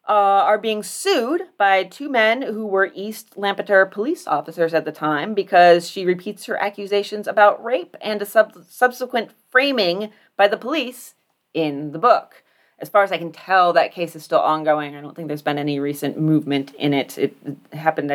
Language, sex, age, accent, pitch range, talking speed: English, female, 30-49, American, 160-205 Hz, 185 wpm